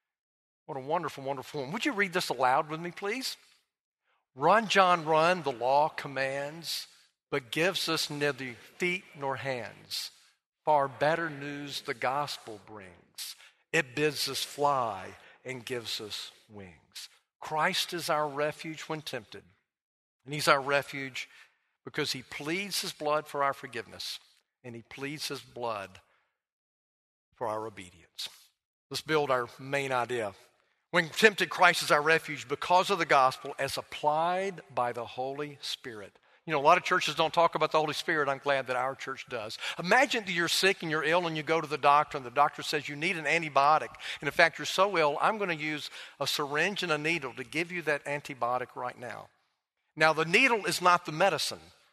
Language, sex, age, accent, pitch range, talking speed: English, male, 50-69, American, 135-175 Hz, 180 wpm